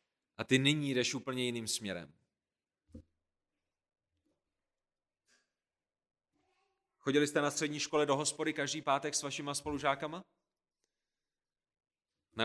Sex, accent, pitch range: male, native, 140-195 Hz